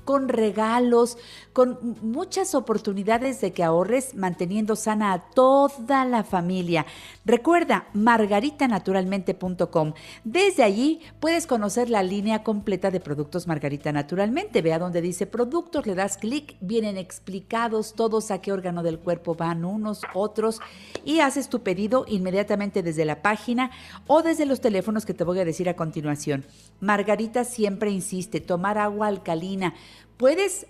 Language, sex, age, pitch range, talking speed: Spanish, female, 50-69, 195-255 Hz, 140 wpm